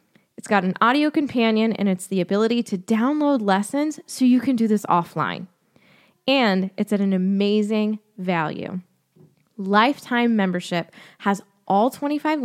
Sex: female